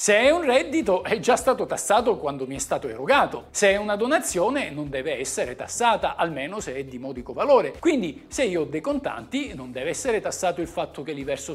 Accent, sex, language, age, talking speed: native, male, Italian, 50-69, 220 wpm